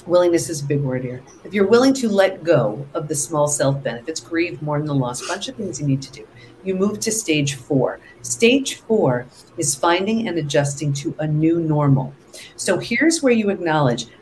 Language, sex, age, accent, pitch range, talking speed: English, female, 50-69, American, 145-230 Hz, 205 wpm